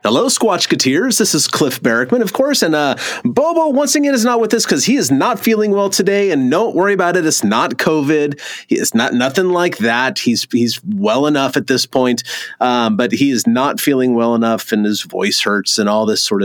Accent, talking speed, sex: American, 220 wpm, male